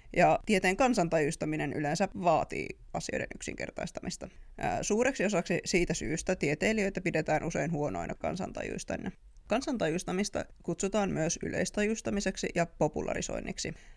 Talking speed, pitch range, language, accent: 95 wpm, 160-215 Hz, Finnish, native